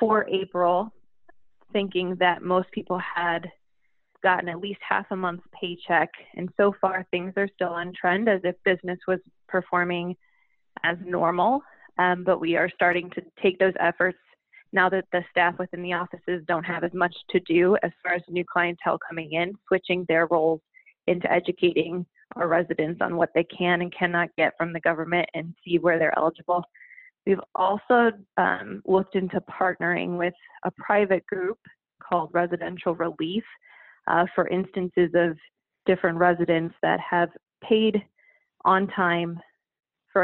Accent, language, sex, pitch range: American, English, female, 175-195 Hz